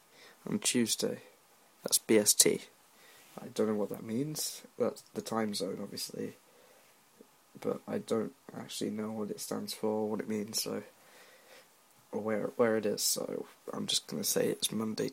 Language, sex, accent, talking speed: English, male, British, 165 wpm